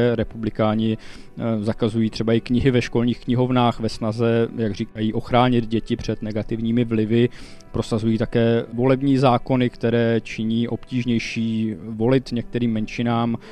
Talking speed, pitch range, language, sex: 120 wpm, 115-125 Hz, Czech, male